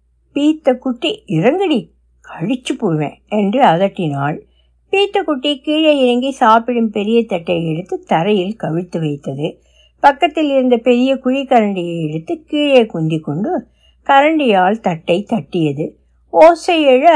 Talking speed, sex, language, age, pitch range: 110 wpm, female, Tamil, 60-79, 185-285 Hz